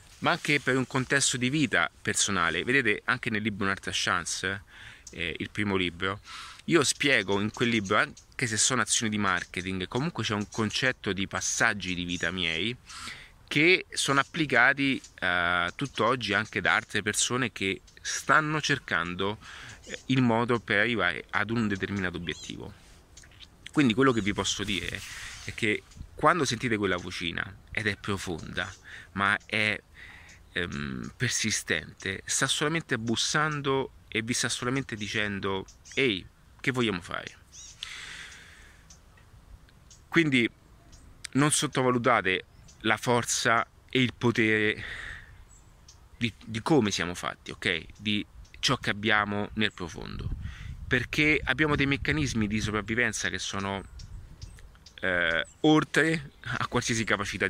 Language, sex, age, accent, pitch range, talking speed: Italian, male, 30-49, native, 95-125 Hz, 125 wpm